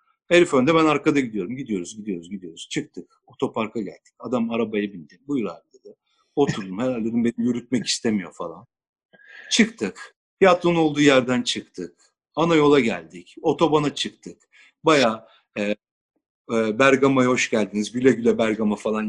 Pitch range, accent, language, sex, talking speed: 120-195 Hz, native, Turkish, male, 135 wpm